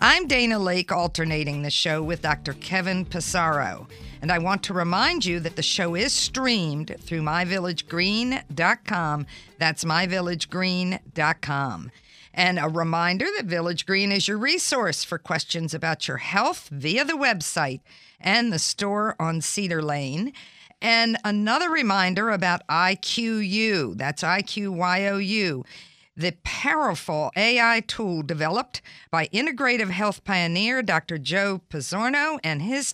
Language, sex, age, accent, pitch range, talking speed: English, female, 50-69, American, 165-215 Hz, 135 wpm